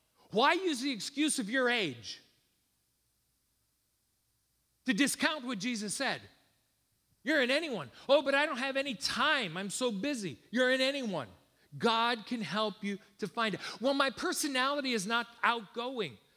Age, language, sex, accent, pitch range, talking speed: 40-59, English, male, American, 140-230 Hz, 150 wpm